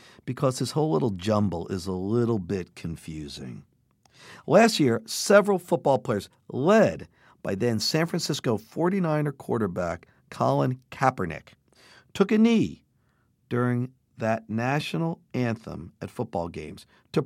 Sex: male